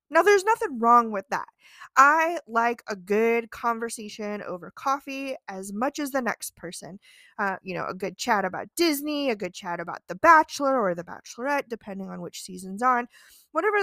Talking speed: 180 wpm